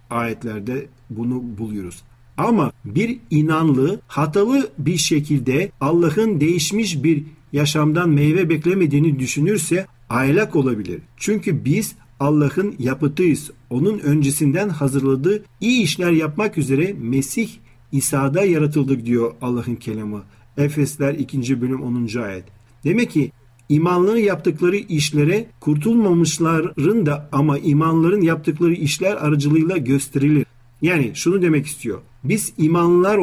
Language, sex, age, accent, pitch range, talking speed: Turkish, male, 50-69, native, 130-165 Hz, 105 wpm